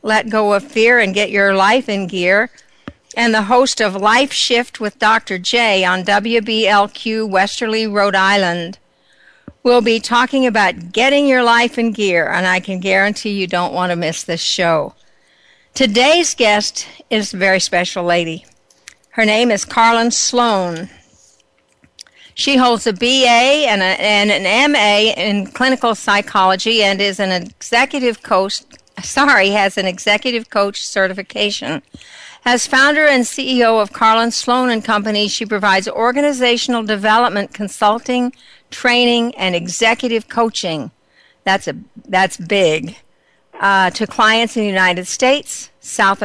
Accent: American